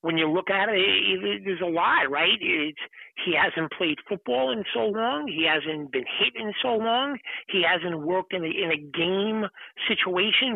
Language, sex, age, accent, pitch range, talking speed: English, male, 50-69, American, 160-205 Hz, 205 wpm